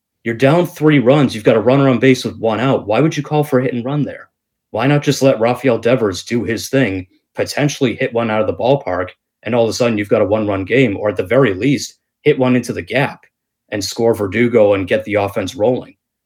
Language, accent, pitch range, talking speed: English, American, 105-135 Hz, 240 wpm